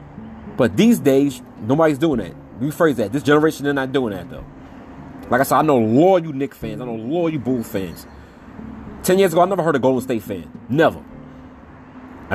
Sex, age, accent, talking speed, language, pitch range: male, 30-49, American, 225 wpm, English, 105-145 Hz